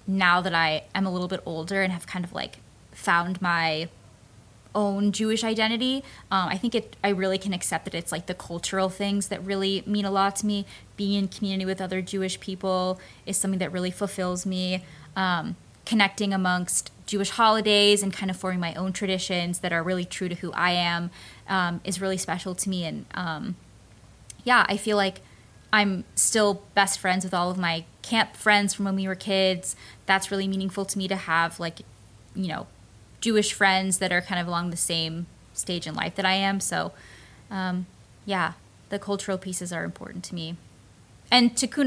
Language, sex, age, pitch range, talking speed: English, female, 20-39, 170-195 Hz, 195 wpm